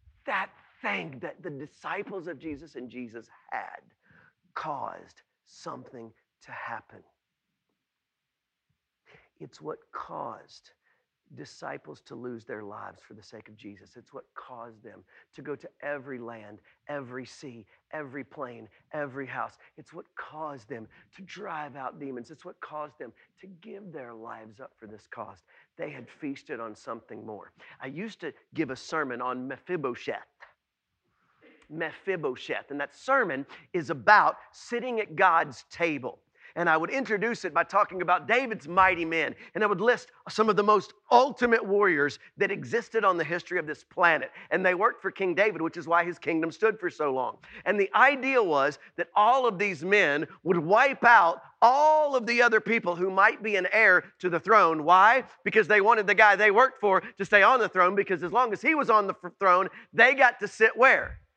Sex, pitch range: male, 145-215 Hz